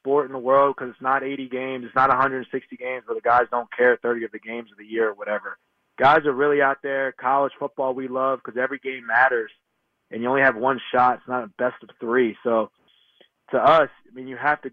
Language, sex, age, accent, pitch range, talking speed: English, male, 20-39, American, 125-140 Hz, 245 wpm